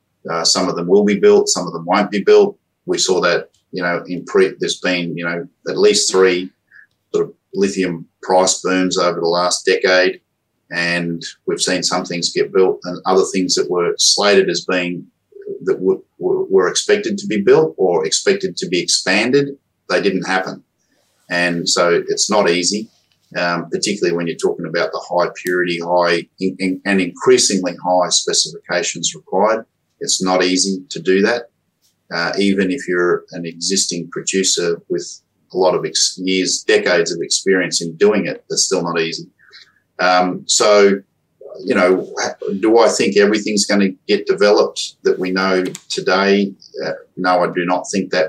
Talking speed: 175 wpm